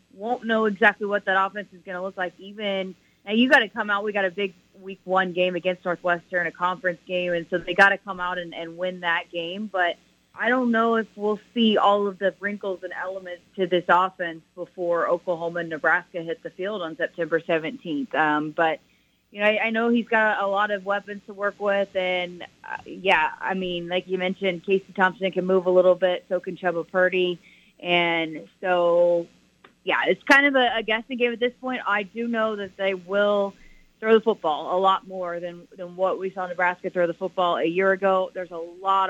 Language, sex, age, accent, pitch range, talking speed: English, female, 30-49, American, 175-200 Hz, 220 wpm